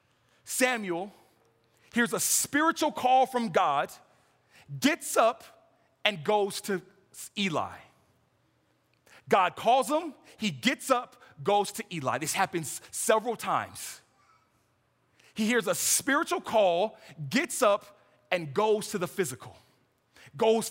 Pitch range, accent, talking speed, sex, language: 170-245 Hz, American, 115 wpm, male, English